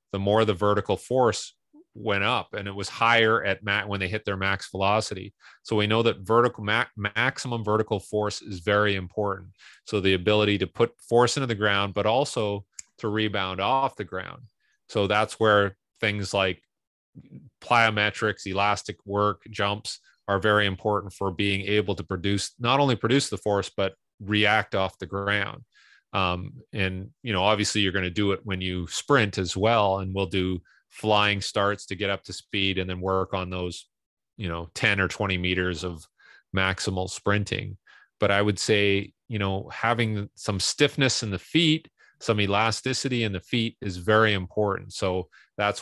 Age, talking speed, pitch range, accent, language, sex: 30-49, 175 wpm, 95-110 Hz, American, English, male